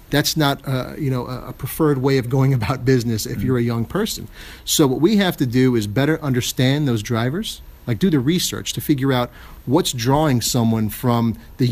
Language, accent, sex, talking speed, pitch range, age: English, American, male, 205 wpm, 115-140 Hz, 40-59